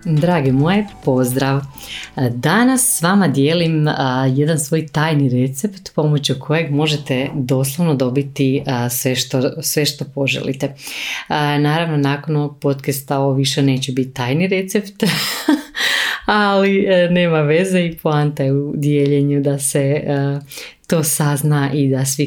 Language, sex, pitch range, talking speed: Croatian, female, 135-155 Hz, 125 wpm